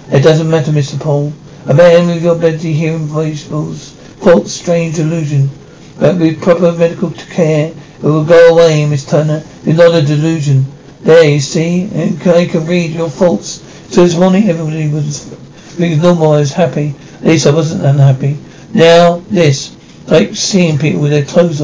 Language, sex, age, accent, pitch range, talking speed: English, male, 60-79, British, 155-175 Hz, 175 wpm